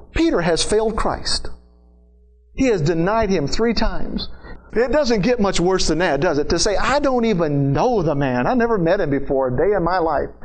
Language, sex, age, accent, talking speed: English, male, 50-69, American, 215 wpm